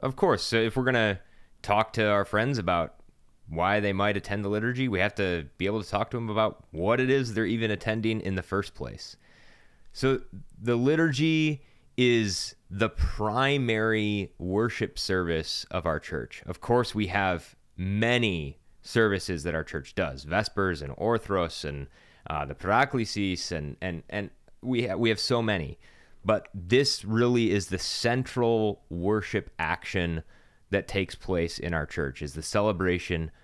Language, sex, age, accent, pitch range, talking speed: English, male, 30-49, American, 90-120 Hz, 165 wpm